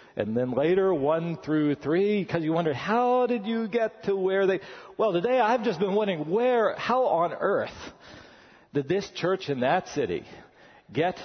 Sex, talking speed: male, 175 wpm